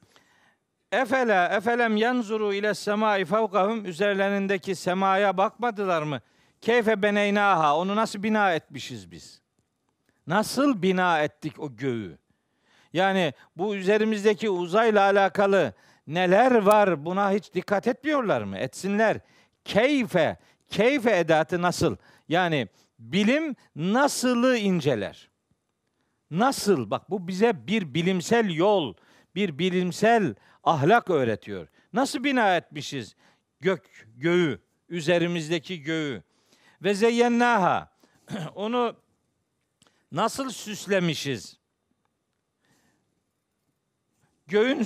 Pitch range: 170-220 Hz